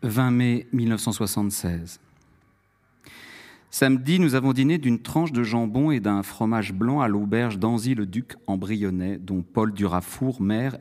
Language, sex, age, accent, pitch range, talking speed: French, male, 50-69, French, 95-130 Hz, 135 wpm